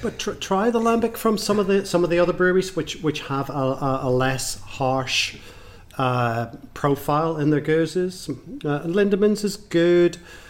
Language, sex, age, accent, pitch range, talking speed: English, male, 40-59, British, 120-145 Hz, 175 wpm